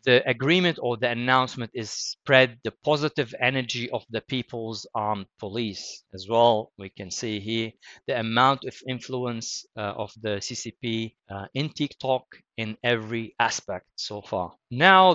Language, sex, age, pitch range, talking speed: English, male, 30-49, 110-130 Hz, 150 wpm